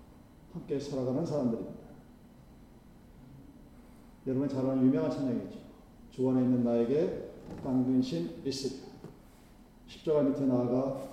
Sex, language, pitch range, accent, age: male, Korean, 130-205 Hz, native, 40-59